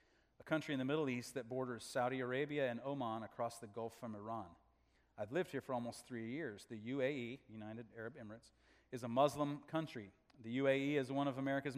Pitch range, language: 115-150 Hz, English